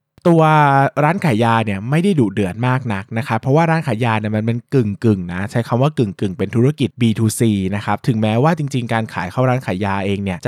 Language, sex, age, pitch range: Thai, male, 20-39, 100-135 Hz